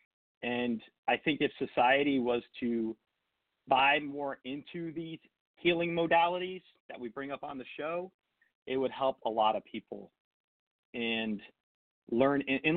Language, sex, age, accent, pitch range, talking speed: English, male, 40-59, American, 115-150 Hz, 140 wpm